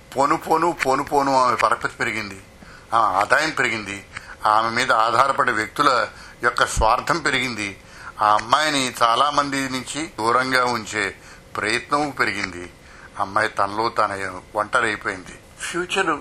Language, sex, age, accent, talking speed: Telugu, male, 60-79, native, 120 wpm